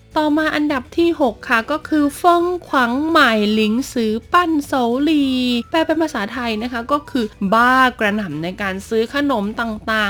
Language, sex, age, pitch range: Thai, female, 20-39, 190-255 Hz